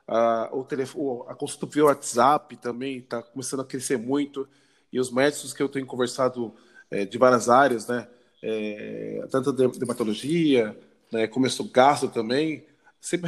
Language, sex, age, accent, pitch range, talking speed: Portuguese, male, 20-39, Brazilian, 125-170 Hz, 160 wpm